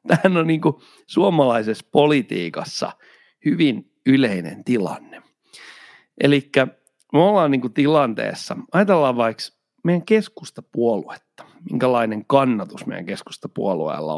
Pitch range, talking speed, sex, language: 130-190 Hz, 90 wpm, male, Finnish